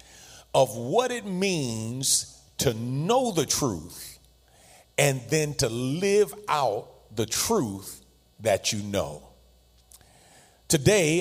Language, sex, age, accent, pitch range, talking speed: English, male, 50-69, American, 115-150 Hz, 100 wpm